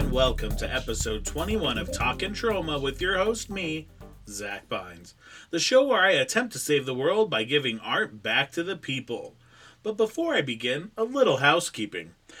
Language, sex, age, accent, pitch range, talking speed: English, male, 30-49, American, 120-155 Hz, 185 wpm